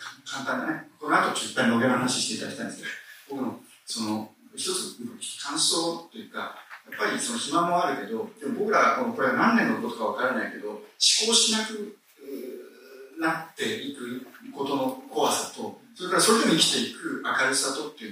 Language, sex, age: Japanese, male, 40-59